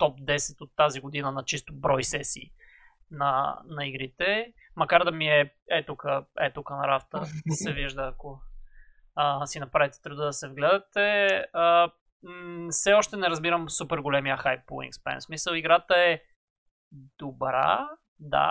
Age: 20-39